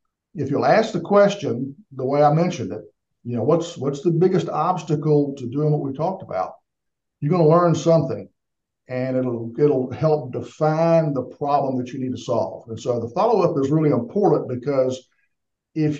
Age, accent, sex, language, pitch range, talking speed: 50-69, American, male, English, 130-155 Hz, 190 wpm